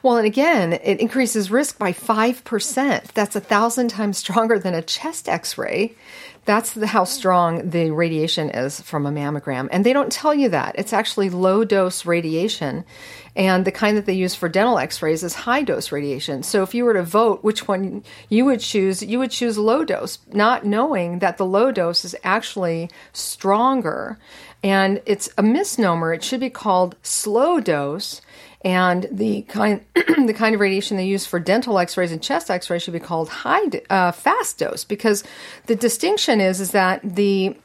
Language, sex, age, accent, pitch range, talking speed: English, female, 40-59, American, 180-235 Hz, 175 wpm